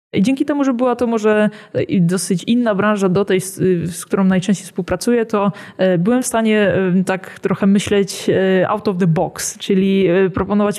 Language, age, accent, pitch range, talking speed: Polish, 20-39, native, 185-215 Hz, 160 wpm